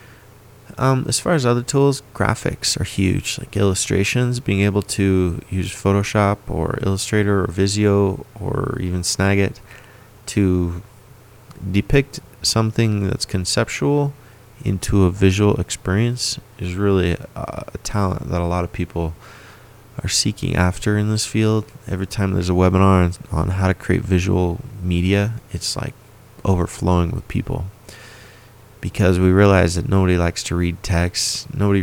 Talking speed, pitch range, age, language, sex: 140 wpm, 90-115 Hz, 30-49, English, male